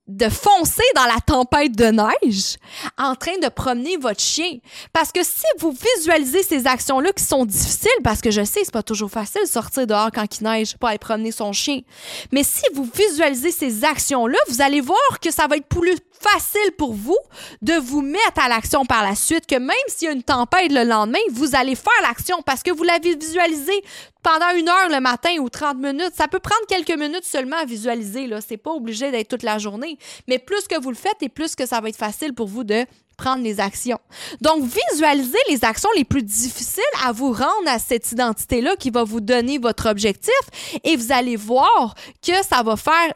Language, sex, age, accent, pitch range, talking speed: French, female, 20-39, Canadian, 240-330 Hz, 215 wpm